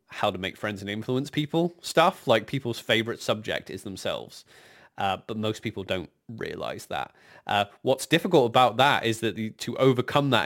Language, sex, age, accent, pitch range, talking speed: English, male, 20-39, British, 100-130 Hz, 180 wpm